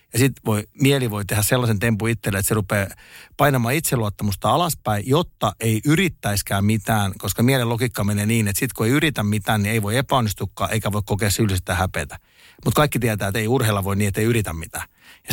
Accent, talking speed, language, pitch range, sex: native, 200 wpm, Finnish, 105-130 Hz, male